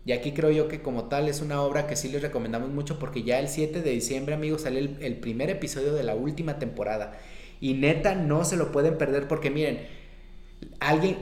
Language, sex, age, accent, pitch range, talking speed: Spanish, male, 30-49, Mexican, 130-165 Hz, 220 wpm